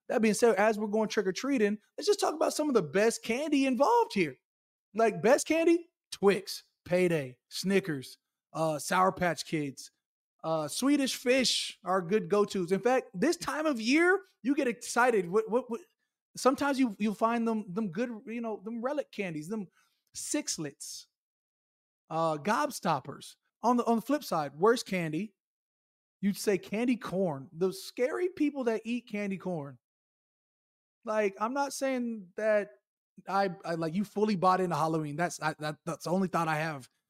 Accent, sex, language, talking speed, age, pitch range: American, male, English, 160 wpm, 20-39, 175-235 Hz